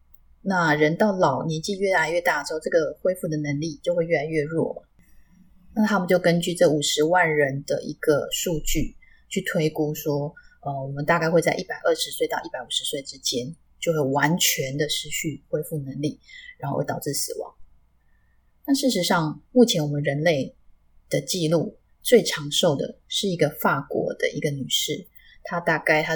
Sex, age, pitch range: female, 20-39, 145-205 Hz